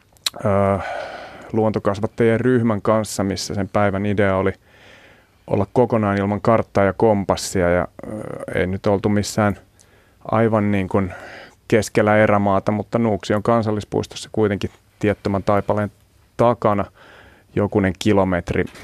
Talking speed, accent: 105 wpm, native